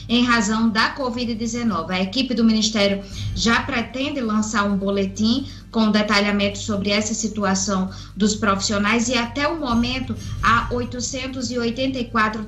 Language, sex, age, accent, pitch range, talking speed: Portuguese, female, 20-39, Brazilian, 200-245 Hz, 125 wpm